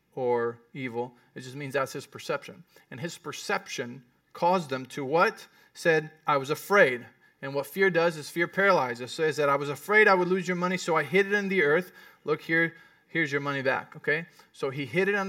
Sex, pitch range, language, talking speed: male, 135-180 Hz, English, 215 wpm